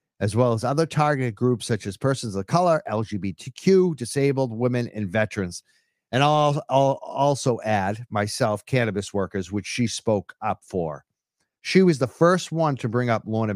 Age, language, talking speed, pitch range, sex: 50-69, English, 170 wpm, 110-150 Hz, male